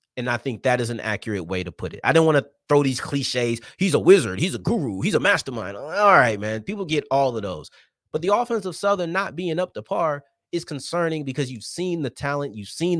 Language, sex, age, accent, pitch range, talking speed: English, male, 30-49, American, 115-170 Hz, 250 wpm